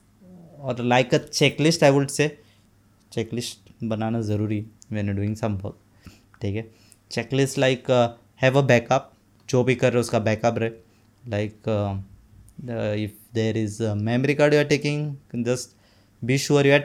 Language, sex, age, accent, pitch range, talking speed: Hindi, male, 20-39, native, 105-125 Hz, 150 wpm